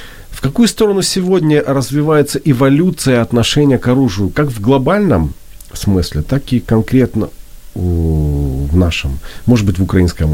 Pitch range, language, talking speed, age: 90-125 Hz, Ukrainian, 130 wpm, 40-59